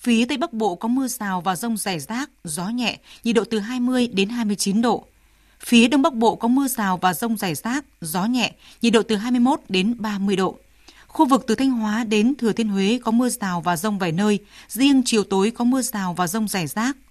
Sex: female